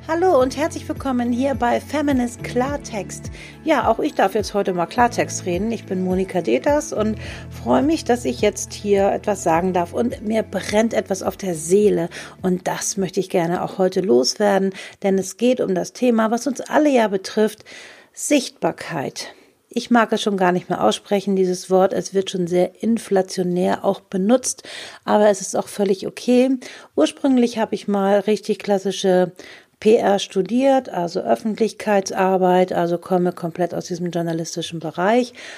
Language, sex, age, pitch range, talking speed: German, female, 50-69, 185-230 Hz, 165 wpm